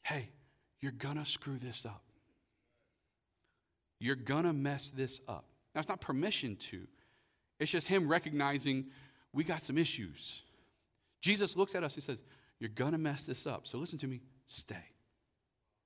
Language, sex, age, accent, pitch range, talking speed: English, male, 40-59, American, 135-175 Hz, 160 wpm